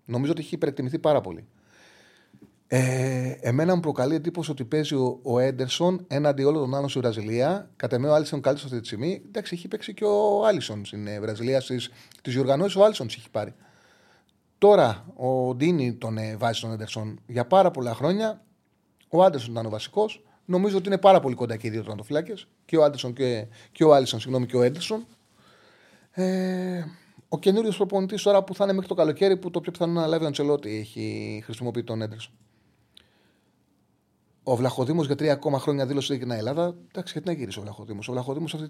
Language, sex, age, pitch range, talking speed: Greek, male, 30-49, 115-170 Hz, 190 wpm